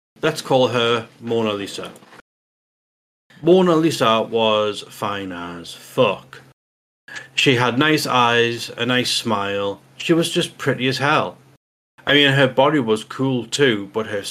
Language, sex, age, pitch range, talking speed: English, male, 30-49, 110-155 Hz, 140 wpm